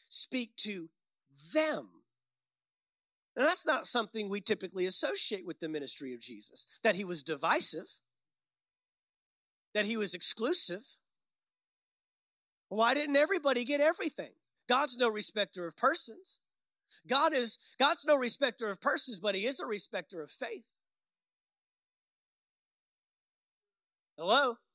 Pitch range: 200-280 Hz